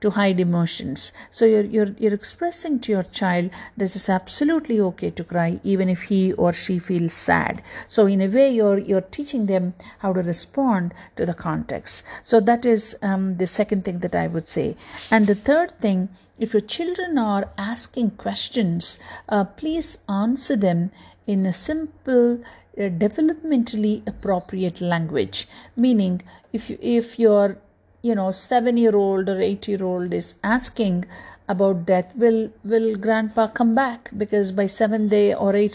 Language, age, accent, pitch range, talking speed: English, 50-69, Indian, 195-240 Hz, 160 wpm